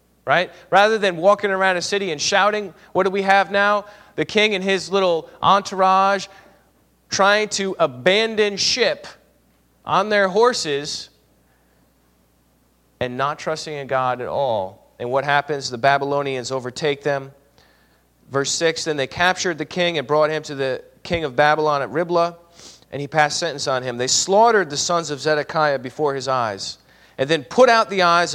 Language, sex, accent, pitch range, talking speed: English, male, American, 130-195 Hz, 165 wpm